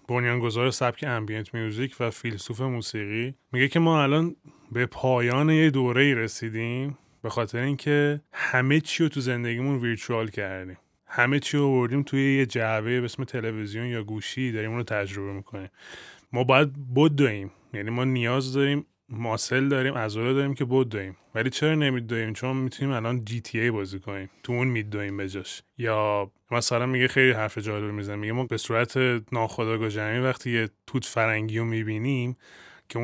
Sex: male